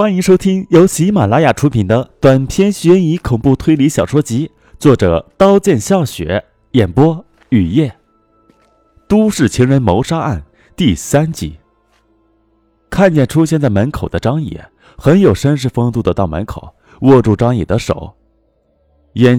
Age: 30-49